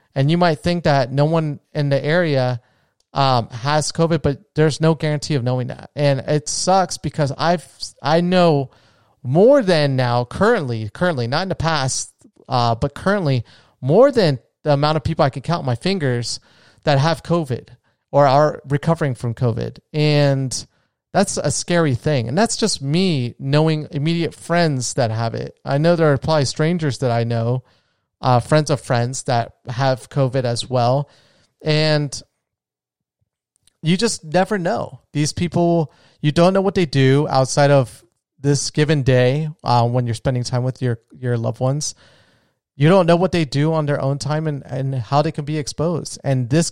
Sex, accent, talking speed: male, American, 175 wpm